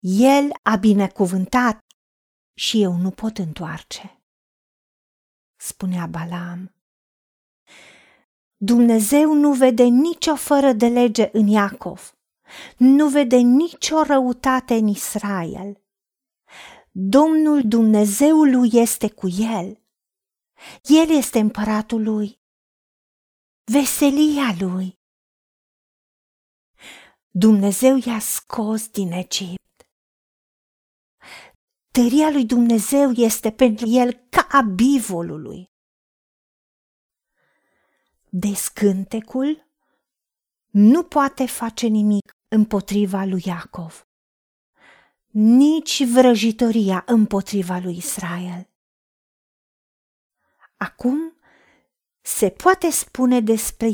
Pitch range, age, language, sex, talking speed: 195-265 Hz, 40-59, Romanian, female, 75 wpm